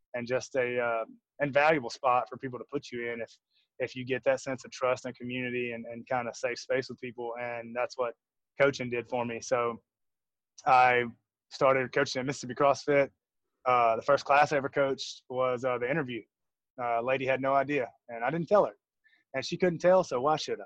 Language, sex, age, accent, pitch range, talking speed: English, male, 20-39, American, 120-150 Hz, 210 wpm